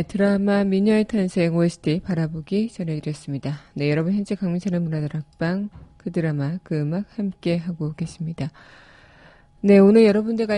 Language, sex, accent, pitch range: Korean, female, native, 160-195 Hz